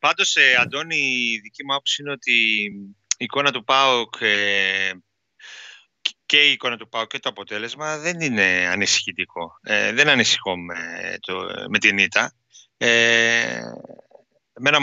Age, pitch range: 30-49, 105-130 Hz